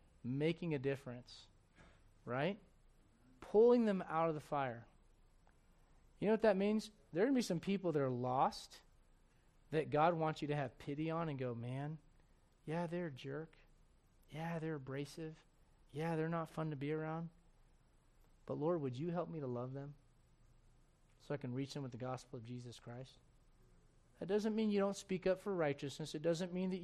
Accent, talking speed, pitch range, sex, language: American, 185 wpm, 125-165 Hz, male, English